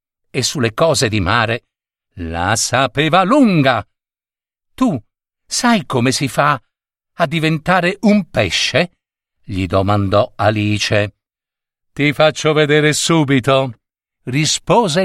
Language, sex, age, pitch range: Italian, male, 50-69, 105-170 Hz